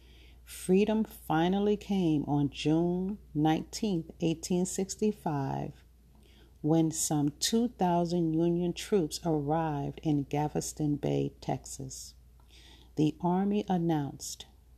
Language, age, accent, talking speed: English, 40-59, American, 80 wpm